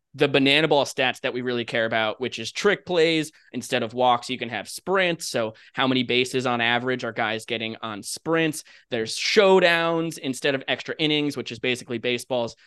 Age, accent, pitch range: 20-39, American, 120-145 Hz